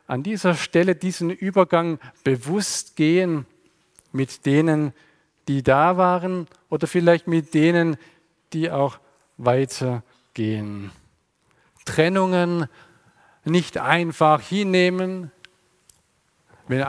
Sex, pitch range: male, 145-185 Hz